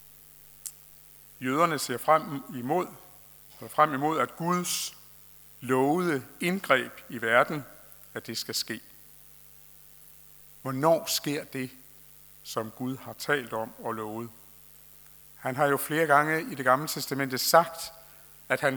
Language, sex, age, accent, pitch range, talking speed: Danish, male, 60-79, native, 125-155 Hz, 125 wpm